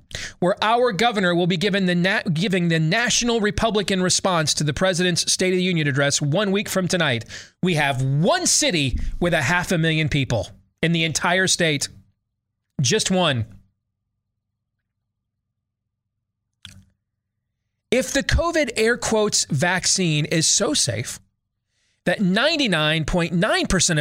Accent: American